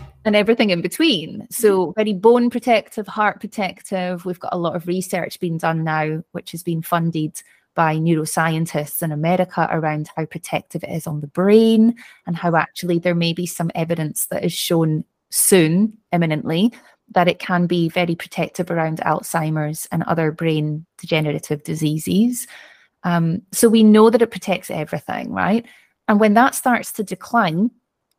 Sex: female